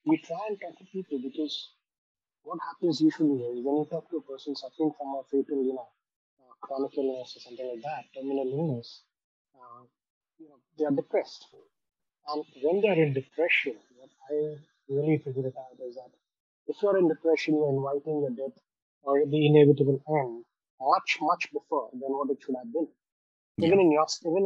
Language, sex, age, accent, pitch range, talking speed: English, male, 30-49, Indian, 140-170 Hz, 180 wpm